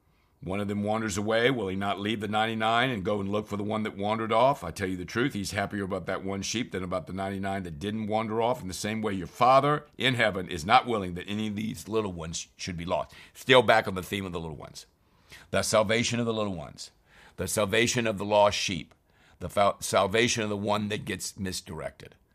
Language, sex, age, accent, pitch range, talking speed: English, male, 50-69, American, 95-115 Hz, 240 wpm